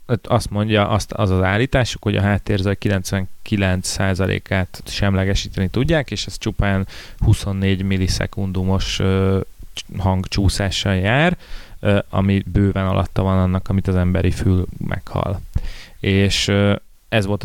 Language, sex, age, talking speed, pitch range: Hungarian, male, 30-49, 105 wpm, 90-105 Hz